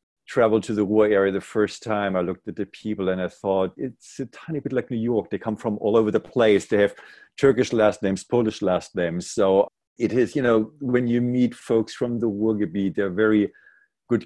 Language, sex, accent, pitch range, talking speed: English, male, German, 95-110 Hz, 225 wpm